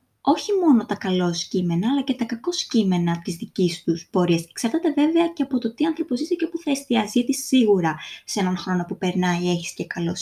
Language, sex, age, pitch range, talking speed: Greek, female, 20-39, 190-255 Hz, 200 wpm